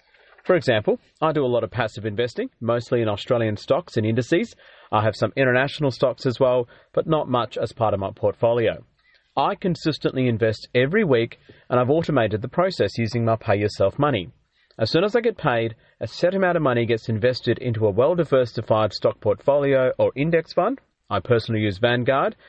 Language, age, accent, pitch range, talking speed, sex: English, 40-59, Australian, 110-135 Hz, 185 wpm, male